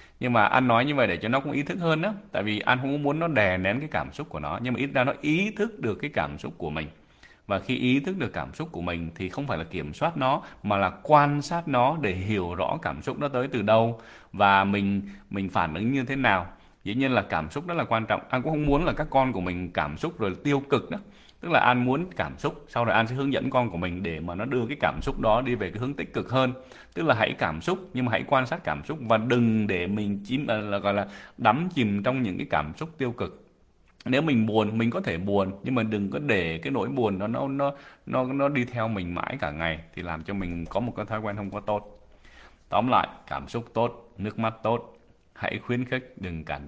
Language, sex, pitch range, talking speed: English, male, 95-130 Hz, 275 wpm